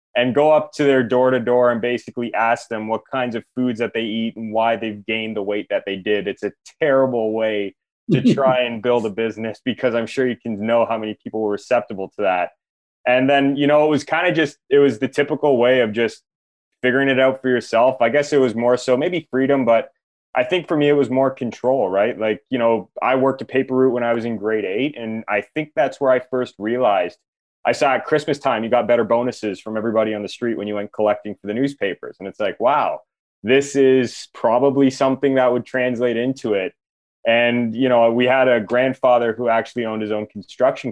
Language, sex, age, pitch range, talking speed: English, male, 20-39, 110-130 Hz, 230 wpm